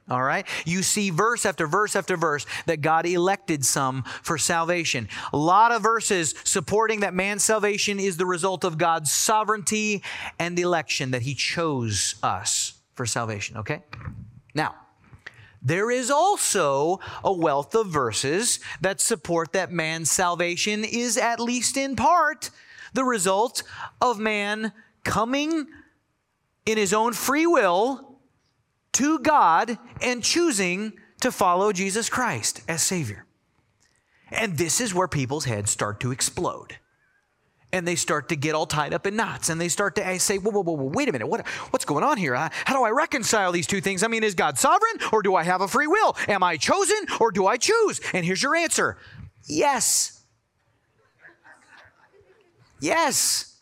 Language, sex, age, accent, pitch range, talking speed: English, male, 30-49, American, 165-230 Hz, 160 wpm